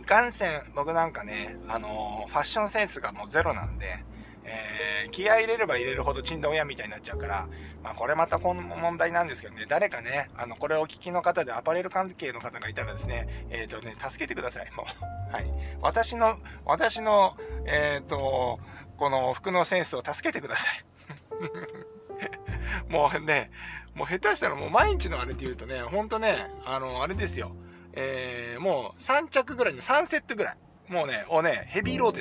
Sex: male